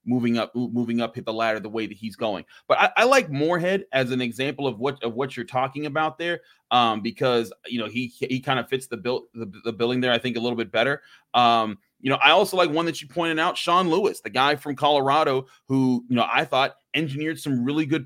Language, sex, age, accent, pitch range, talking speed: English, male, 30-49, American, 115-145 Hz, 250 wpm